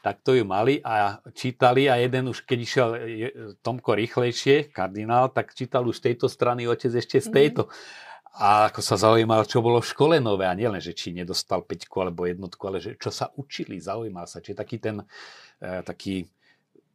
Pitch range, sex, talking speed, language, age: 90-110 Hz, male, 185 wpm, Slovak, 40-59